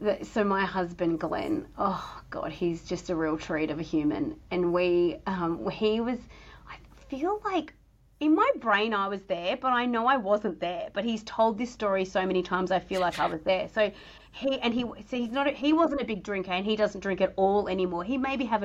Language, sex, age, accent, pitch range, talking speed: English, female, 30-49, Australian, 185-230 Hz, 230 wpm